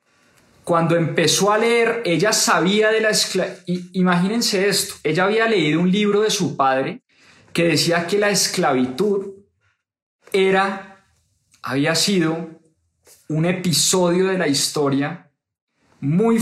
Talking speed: 120 wpm